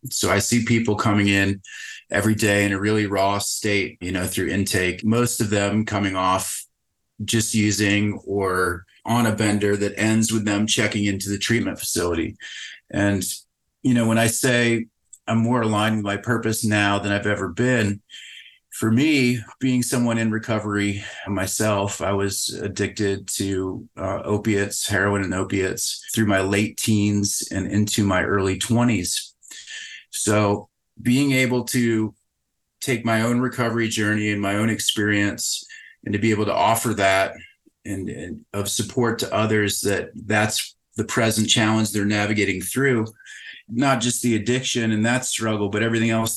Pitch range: 100-115 Hz